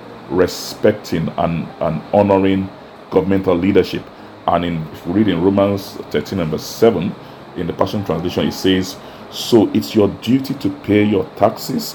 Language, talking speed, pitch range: English, 135 wpm, 95-110 Hz